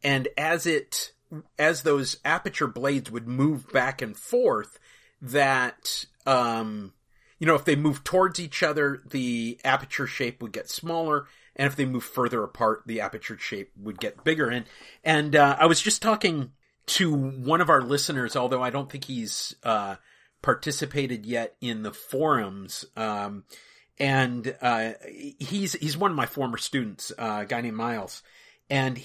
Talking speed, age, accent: 165 wpm, 40-59, American